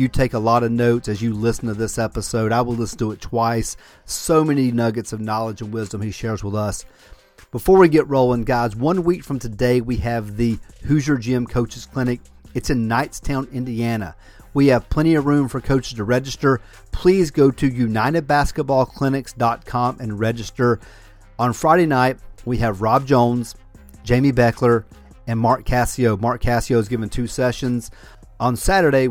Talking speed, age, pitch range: 175 wpm, 40-59, 110-135 Hz